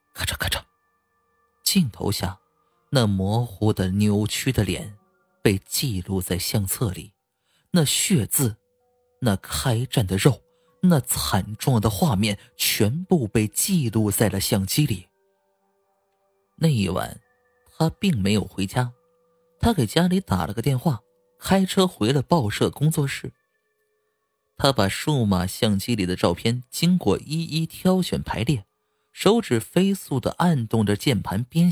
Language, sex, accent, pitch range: Chinese, male, native, 105-170 Hz